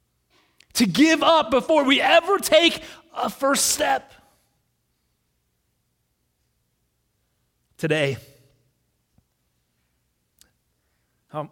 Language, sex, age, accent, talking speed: English, male, 30-49, American, 65 wpm